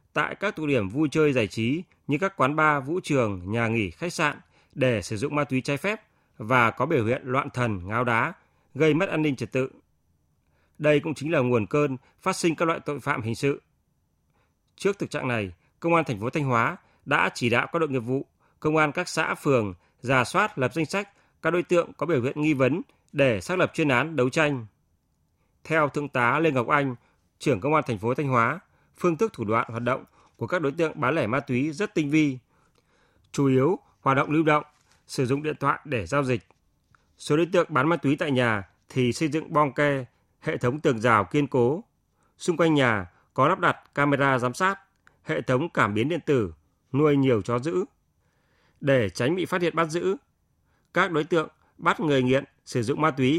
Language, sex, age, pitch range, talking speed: Vietnamese, male, 20-39, 125-160 Hz, 215 wpm